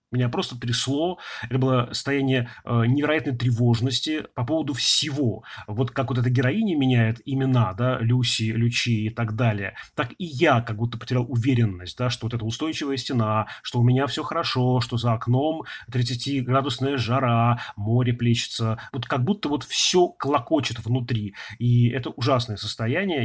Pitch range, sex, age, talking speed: 115-130 Hz, male, 30-49, 160 wpm